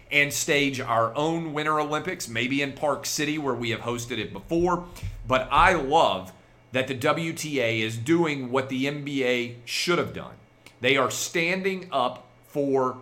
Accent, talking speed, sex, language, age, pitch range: American, 160 wpm, male, English, 40-59, 120-145 Hz